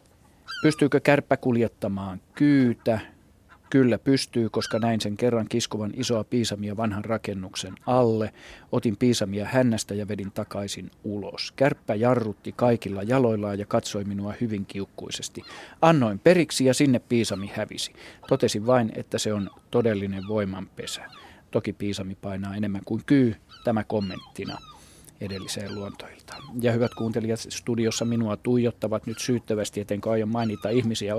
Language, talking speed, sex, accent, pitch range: Finnish, 130 wpm, male, native, 105-130 Hz